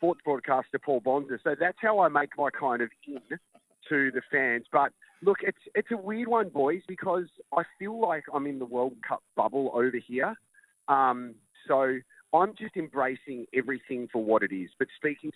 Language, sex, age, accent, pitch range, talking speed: English, male, 40-59, Australian, 110-145 Hz, 190 wpm